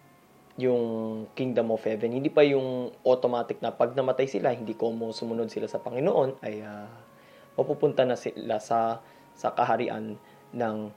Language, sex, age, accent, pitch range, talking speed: Filipino, male, 20-39, native, 110-145 Hz, 150 wpm